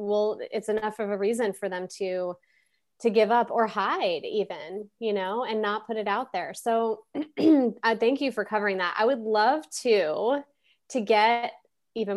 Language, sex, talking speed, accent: English, female, 180 wpm, American